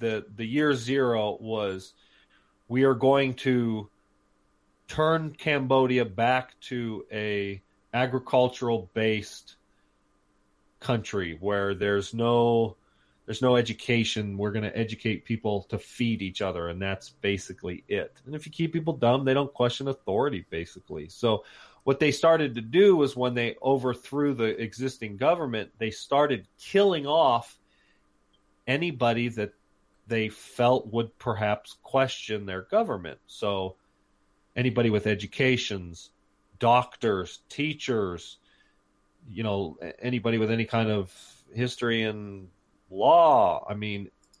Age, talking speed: 30-49, 125 wpm